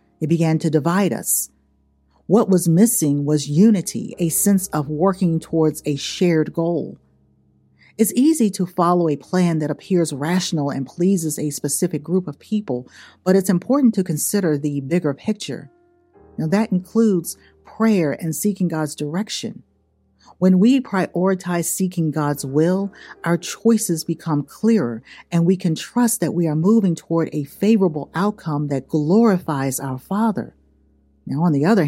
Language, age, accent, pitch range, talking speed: English, 50-69, American, 150-200 Hz, 150 wpm